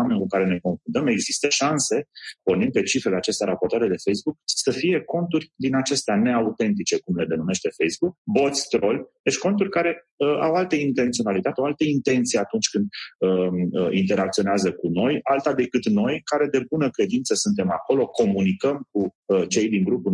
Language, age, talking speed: Romanian, 30-49, 170 wpm